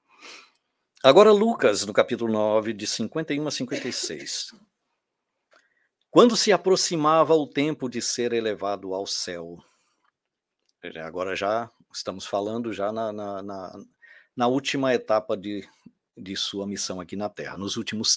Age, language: 50-69, Portuguese